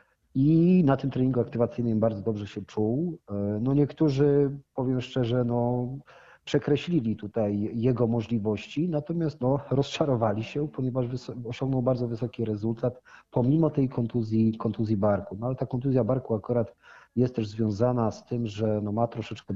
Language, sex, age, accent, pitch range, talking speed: Polish, male, 40-59, native, 110-130 Hz, 145 wpm